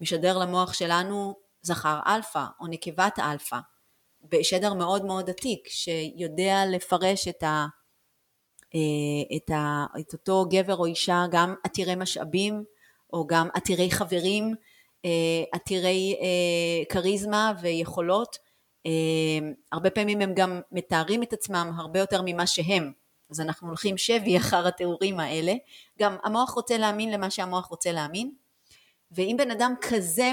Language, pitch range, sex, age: Hebrew, 165-200 Hz, female, 30-49